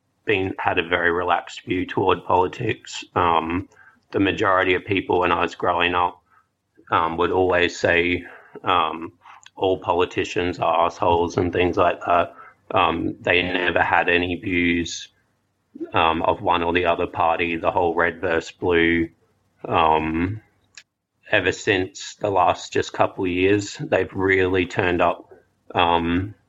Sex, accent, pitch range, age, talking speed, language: male, Australian, 85-95 Hz, 30-49, 145 wpm, English